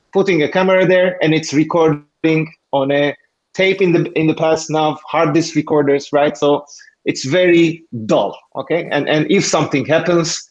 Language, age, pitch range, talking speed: English, 30-49, 140-180 Hz, 170 wpm